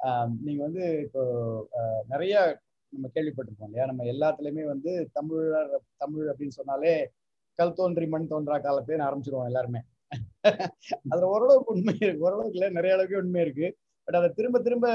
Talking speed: 135 wpm